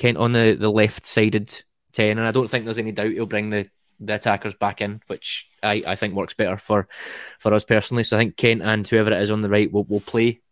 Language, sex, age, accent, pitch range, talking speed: English, male, 20-39, British, 105-120 Hz, 250 wpm